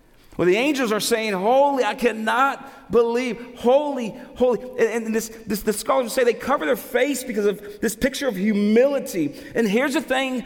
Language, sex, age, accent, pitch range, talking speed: English, male, 40-59, American, 210-255 Hz, 180 wpm